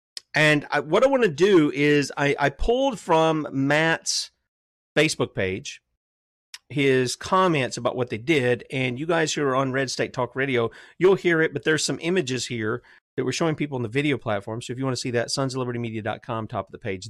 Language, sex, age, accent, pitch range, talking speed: English, male, 40-59, American, 115-160 Hz, 205 wpm